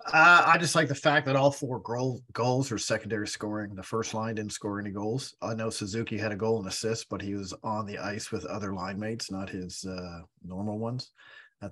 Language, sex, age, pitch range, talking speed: English, male, 40-59, 100-125 Hz, 220 wpm